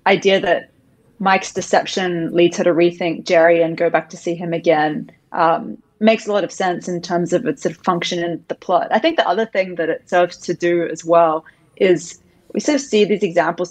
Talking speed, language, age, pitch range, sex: 225 wpm, English, 30-49, 165-185 Hz, female